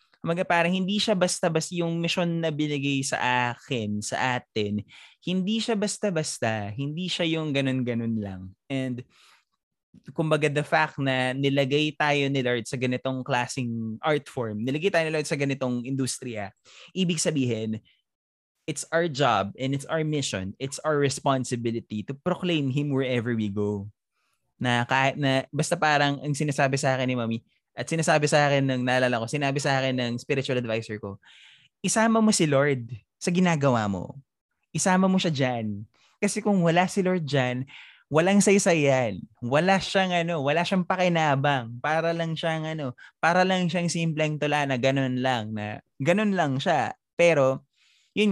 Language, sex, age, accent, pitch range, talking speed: Filipino, male, 20-39, native, 125-170 Hz, 160 wpm